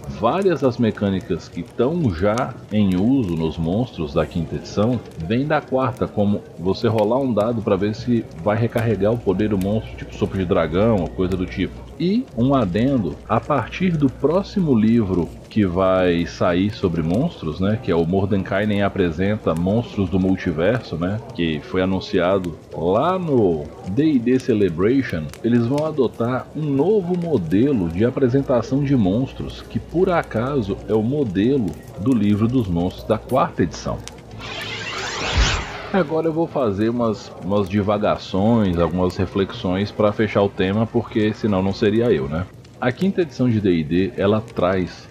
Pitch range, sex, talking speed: 95-130 Hz, male, 155 wpm